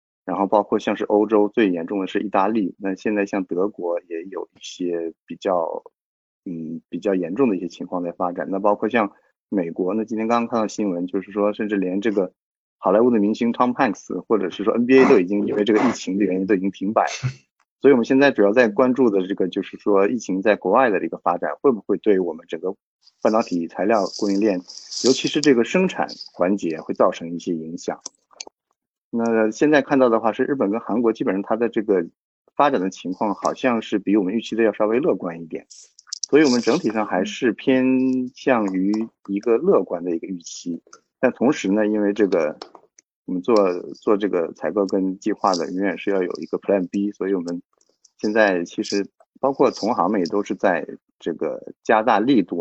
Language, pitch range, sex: Chinese, 95-115 Hz, male